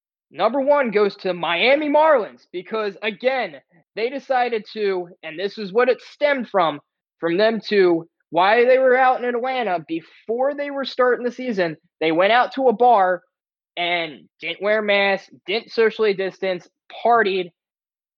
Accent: American